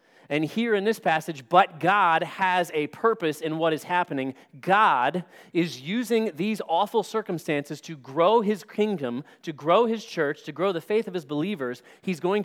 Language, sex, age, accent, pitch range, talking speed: English, male, 30-49, American, 155-210 Hz, 180 wpm